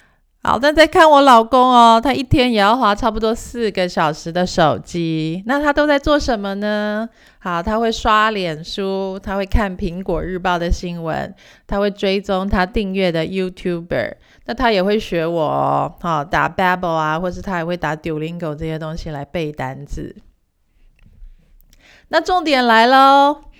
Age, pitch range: 30-49, 165-225 Hz